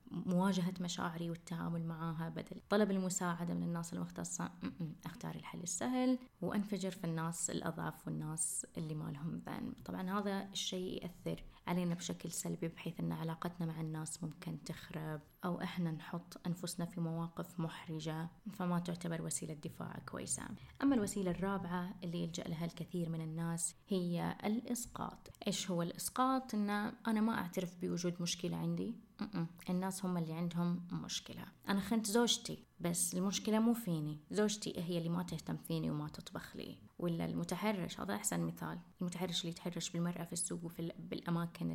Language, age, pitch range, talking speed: Arabic, 20-39, 165-200 Hz, 150 wpm